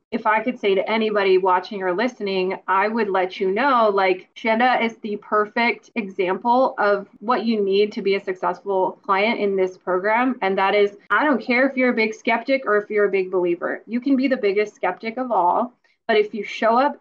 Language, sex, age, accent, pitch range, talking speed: English, female, 20-39, American, 195-245 Hz, 220 wpm